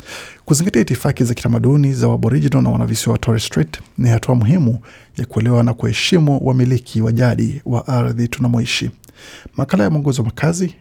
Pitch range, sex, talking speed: 115-135 Hz, male, 165 wpm